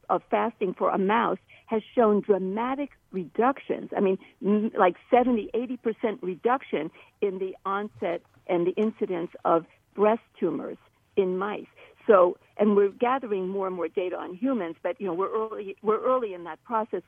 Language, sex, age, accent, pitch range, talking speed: English, female, 50-69, American, 195-245 Hz, 160 wpm